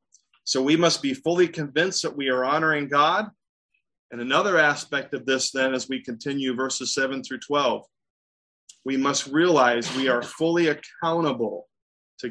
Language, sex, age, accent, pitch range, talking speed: English, male, 30-49, American, 130-175 Hz, 155 wpm